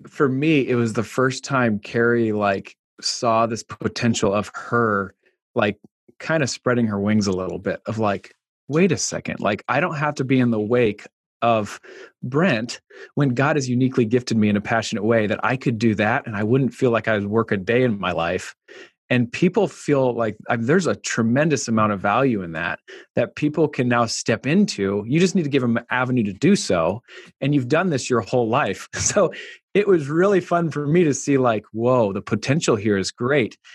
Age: 30-49